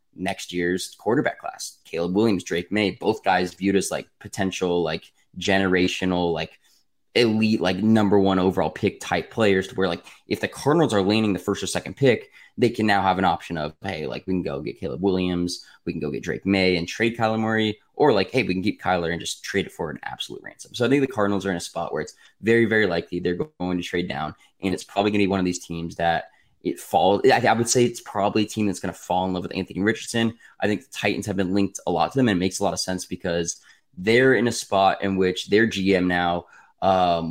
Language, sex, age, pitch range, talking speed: English, male, 20-39, 90-105 Hz, 250 wpm